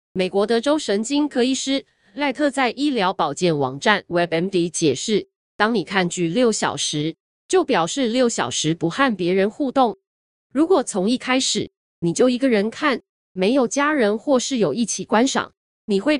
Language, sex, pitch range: Chinese, female, 185-270 Hz